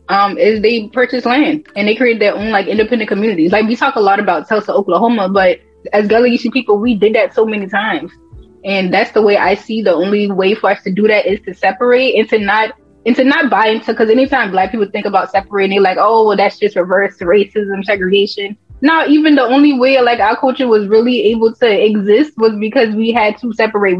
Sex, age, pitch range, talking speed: female, 10-29, 200-240 Hz, 230 wpm